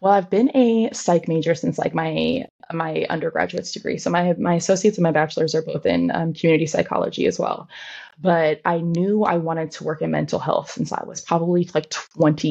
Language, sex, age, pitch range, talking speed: English, female, 20-39, 160-185 Hz, 205 wpm